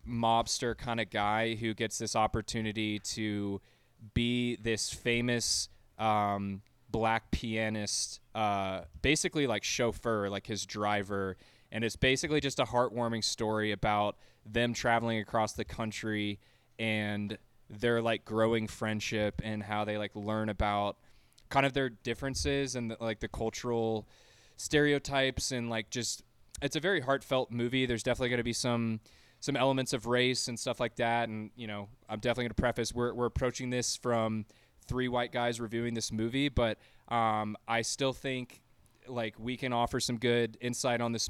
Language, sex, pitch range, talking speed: English, male, 110-120 Hz, 160 wpm